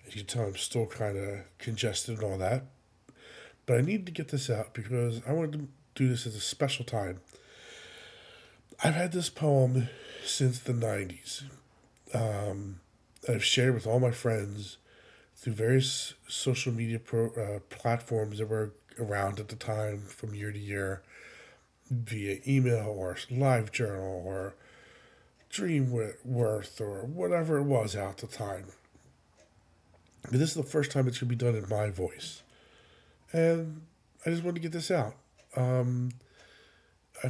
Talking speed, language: 160 wpm, English